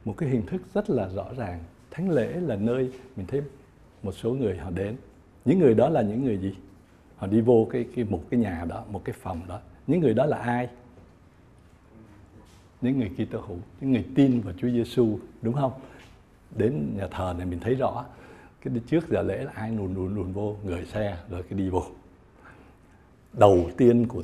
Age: 60-79